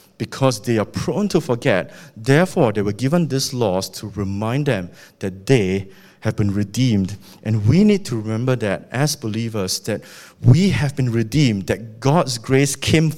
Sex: male